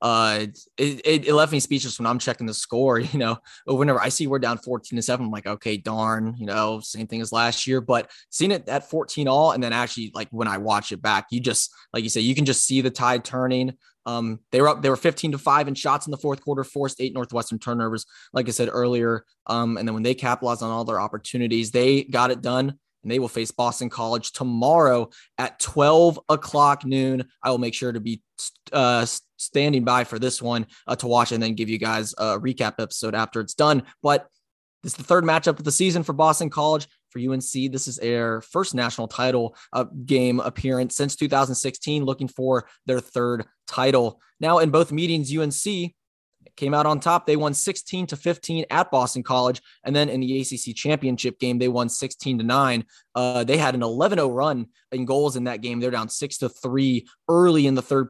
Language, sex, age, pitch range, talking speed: English, male, 20-39, 115-140 Hz, 220 wpm